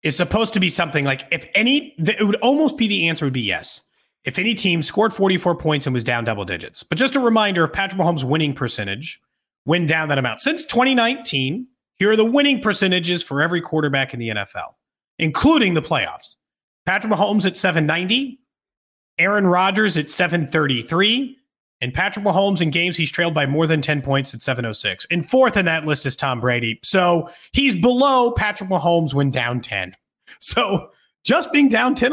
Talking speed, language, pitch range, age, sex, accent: 185 wpm, English, 145-210 Hz, 30-49, male, American